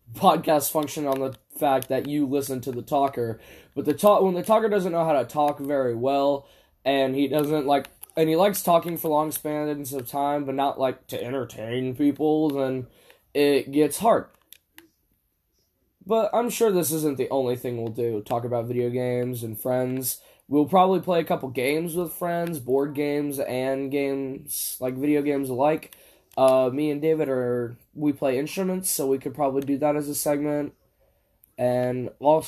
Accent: American